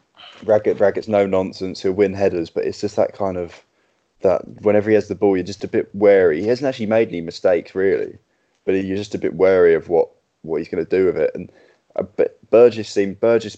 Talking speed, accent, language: 240 wpm, British, English